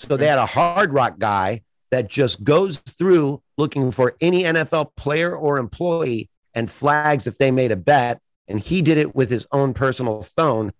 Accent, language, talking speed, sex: American, English, 190 wpm, male